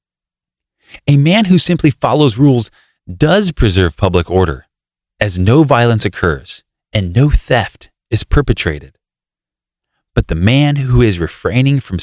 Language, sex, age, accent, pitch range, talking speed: English, male, 30-49, American, 90-135 Hz, 130 wpm